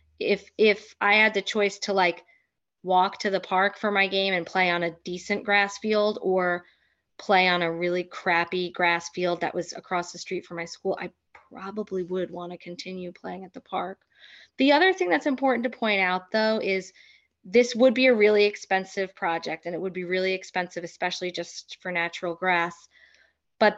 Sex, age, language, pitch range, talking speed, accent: female, 20-39, English, 180-210 Hz, 195 wpm, American